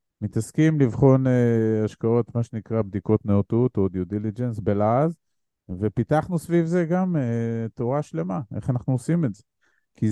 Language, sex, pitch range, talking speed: Hebrew, male, 110-135 Hz, 150 wpm